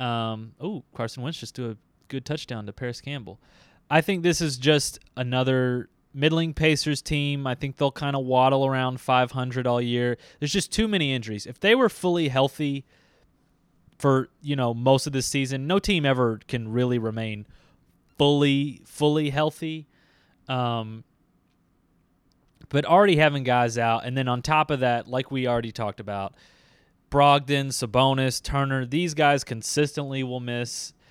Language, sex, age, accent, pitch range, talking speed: English, male, 20-39, American, 120-145 Hz, 160 wpm